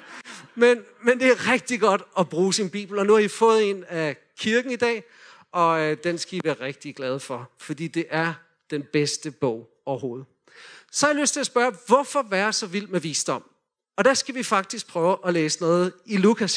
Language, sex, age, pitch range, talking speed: Danish, male, 40-59, 170-225 Hz, 215 wpm